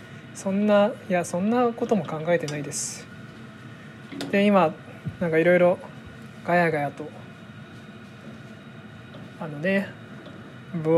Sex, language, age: male, Japanese, 20-39